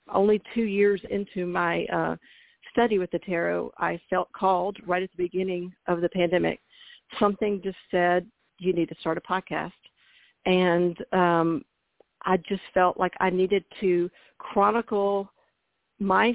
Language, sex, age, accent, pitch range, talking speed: English, female, 50-69, American, 180-205 Hz, 145 wpm